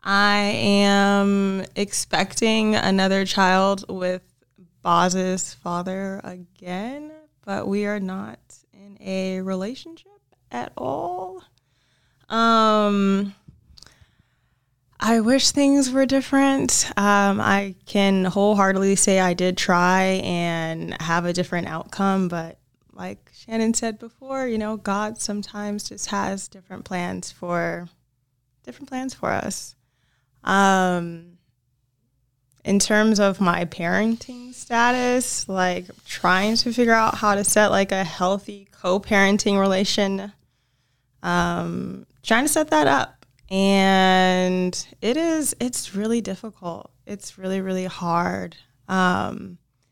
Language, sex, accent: English, female, American